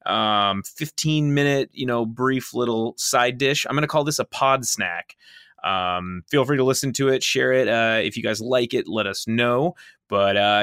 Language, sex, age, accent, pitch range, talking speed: English, male, 20-39, American, 105-135 Hz, 210 wpm